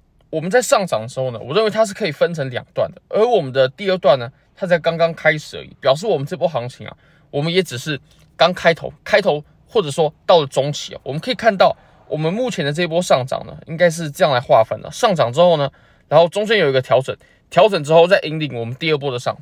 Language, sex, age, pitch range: Chinese, male, 20-39, 130-180 Hz